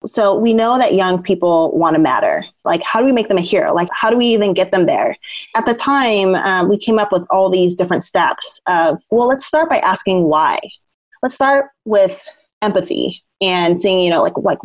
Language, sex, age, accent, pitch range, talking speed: English, female, 30-49, American, 185-240 Hz, 220 wpm